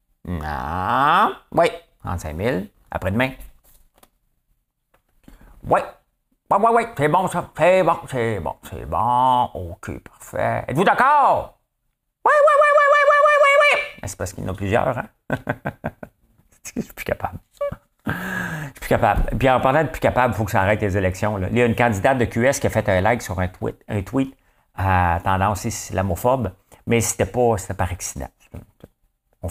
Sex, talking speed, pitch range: male, 185 wpm, 95-120 Hz